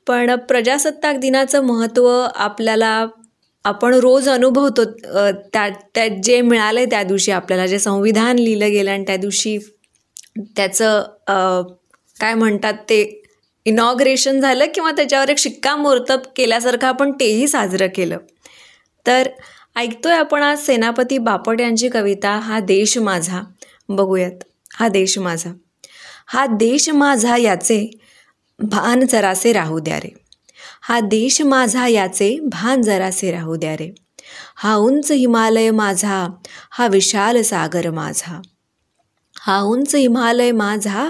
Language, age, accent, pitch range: Marathi, 20-39, native, 200-255 Hz